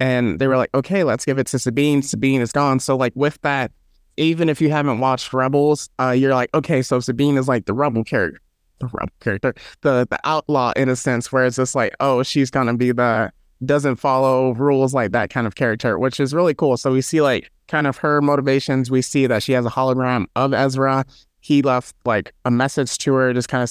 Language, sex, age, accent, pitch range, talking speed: English, male, 20-39, American, 125-150 Hz, 235 wpm